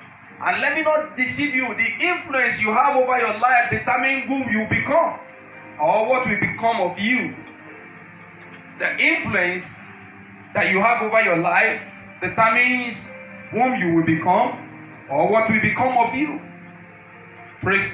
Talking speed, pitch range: 145 wpm, 165-225 Hz